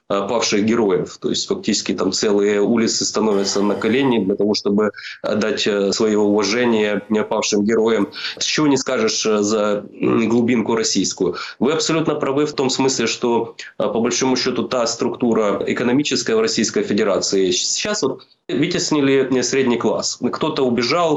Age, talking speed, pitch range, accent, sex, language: 20-39, 140 wpm, 105-130 Hz, native, male, Russian